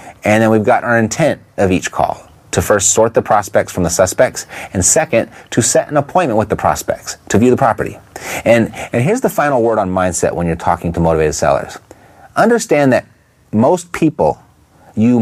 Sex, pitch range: male, 100-155 Hz